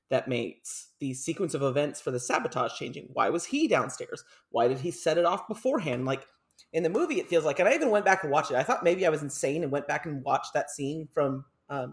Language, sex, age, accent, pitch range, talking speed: English, male, 30-49, American, 140-220 Hz, 255 wpm